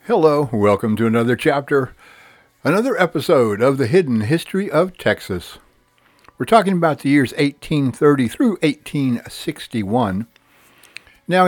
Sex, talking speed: male, 115 wpm